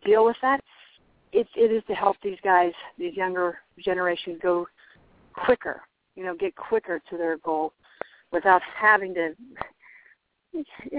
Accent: American